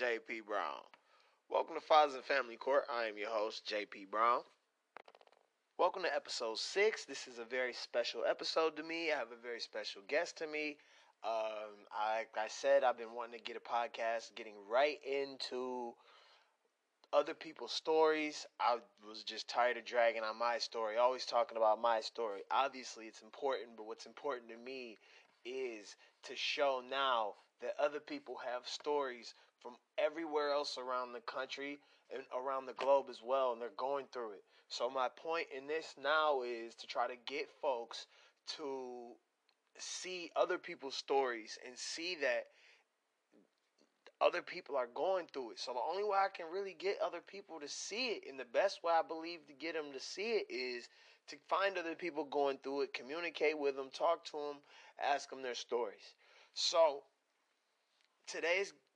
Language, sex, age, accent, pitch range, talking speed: English, male, 20-39, American, 125-195 Hz, 175 wpm